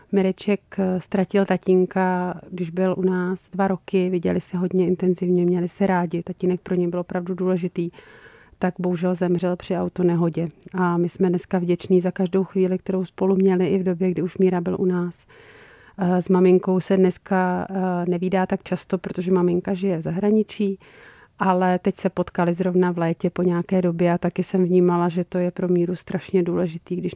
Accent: native